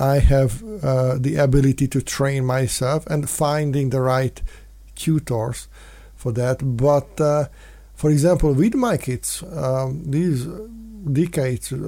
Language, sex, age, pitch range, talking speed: English, male, 50-69, 130-160 Hz, 125 wpm